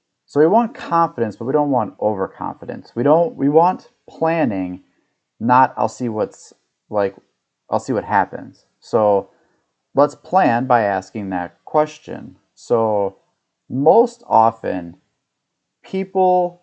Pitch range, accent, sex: 100-135 Hz, American, male